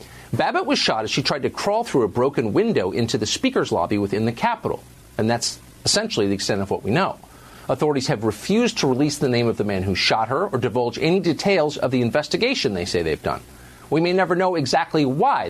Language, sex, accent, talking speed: English, male, American, 225 wpm